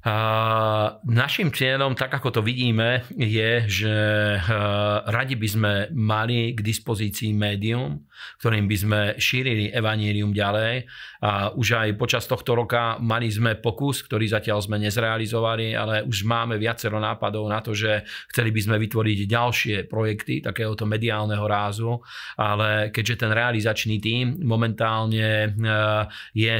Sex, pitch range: male, 105-115 Hz